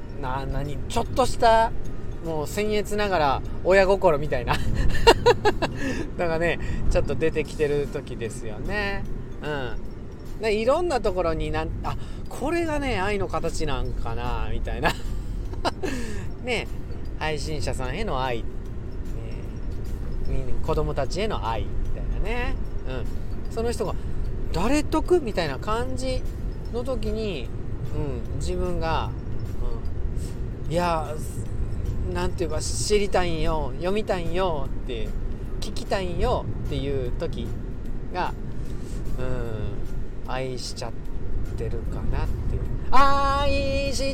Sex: male